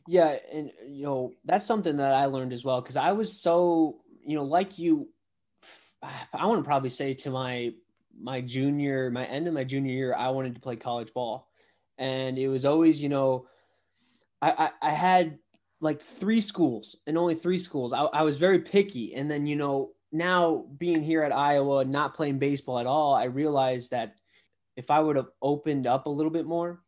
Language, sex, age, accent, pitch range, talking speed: English, male, 20-39, American, 130-155 Hz, 200 wpm